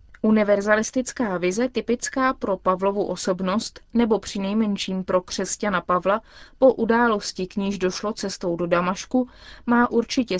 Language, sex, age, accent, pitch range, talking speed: Czech, female, 20-39, native, 190-240 Hz, 125 wpm